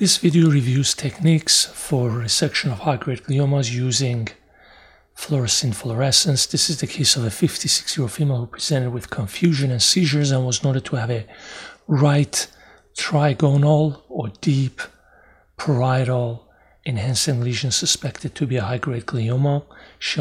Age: 40-59